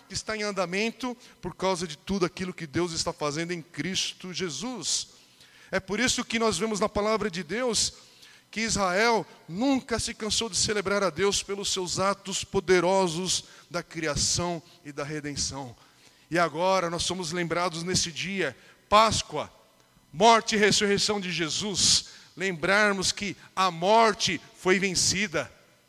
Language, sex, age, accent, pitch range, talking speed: Portuguese, male, 40-59, Brazilian, 160-210 Hz, 145 wpm